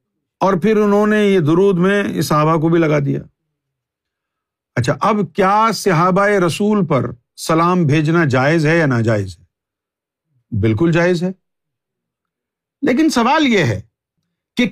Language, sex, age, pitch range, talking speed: Urdu, male, 50-69, 160-235 Hz, 140 wpm